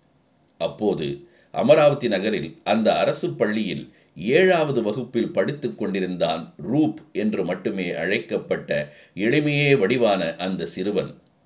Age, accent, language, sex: 50-69, native, Tamil, male